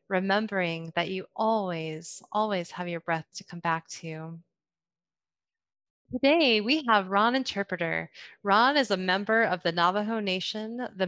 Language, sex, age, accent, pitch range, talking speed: English, female, 20-39, American, 175-215 Hz, 140 wpm